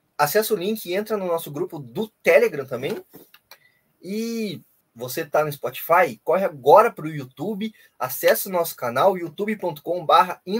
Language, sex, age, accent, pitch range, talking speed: Portuguese, male, 20-39, Brazilian, 165-220 Hz, 145 wpm